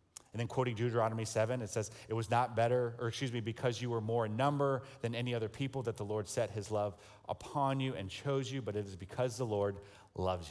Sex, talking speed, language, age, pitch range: male, 240 wpm, English, 40-59, 100-135 Hz